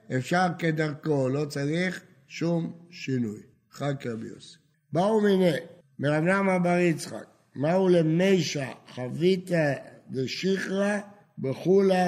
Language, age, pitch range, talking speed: Hebrew, 60-79, 140-190 Hz, 95 wpm